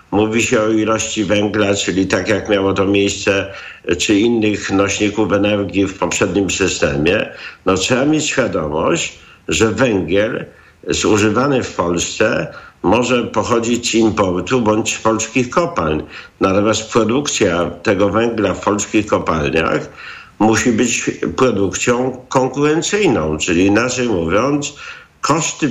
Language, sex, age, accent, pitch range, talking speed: Polish, male, 50-69, native, 100-130 Hz, 115 wpm